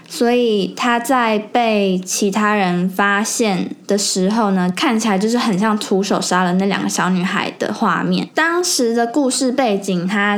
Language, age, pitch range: Chinese, 10-29, 190-235 Hz